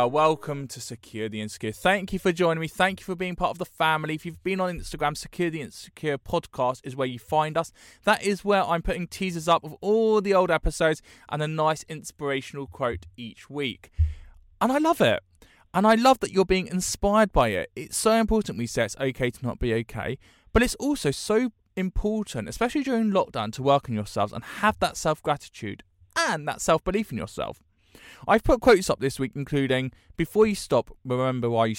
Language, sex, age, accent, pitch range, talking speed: English, male, 20-39, British, 115-185 Hz, 205 wpm